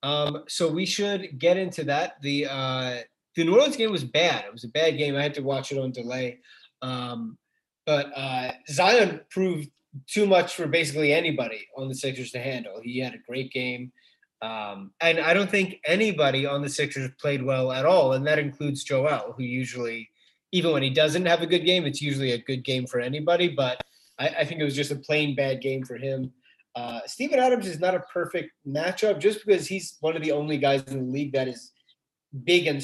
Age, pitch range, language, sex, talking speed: 20-39, 130-170 Hz, English, male, 215 wpm